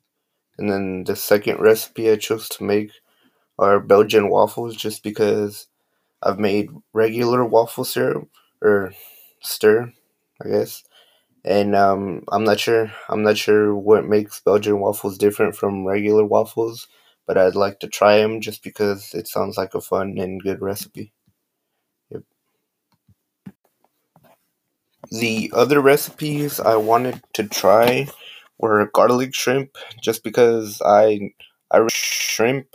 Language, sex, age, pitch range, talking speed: English, male, 20-39, 100-110 Hz, 130 wpm